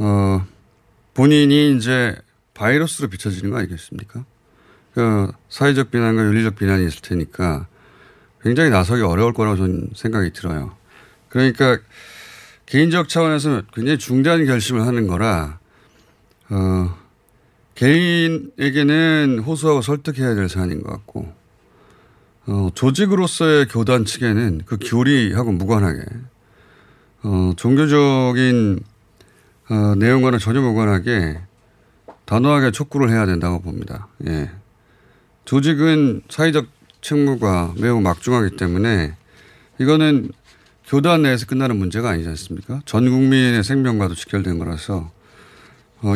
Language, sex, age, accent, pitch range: Korean, male, 30-49, native, 100-130 Hz